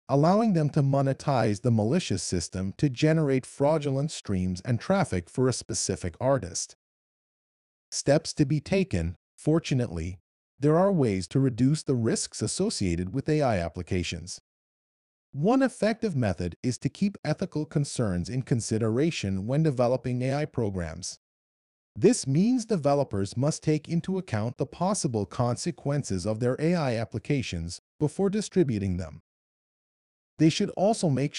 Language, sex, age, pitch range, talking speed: English, male, 40-59, 105-150 Hz, 130 wpm